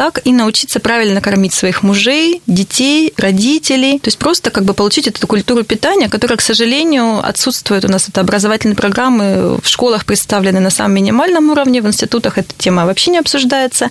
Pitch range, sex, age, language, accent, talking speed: 205-260 Hz, female, 20-39, Russian, native, 175 wpm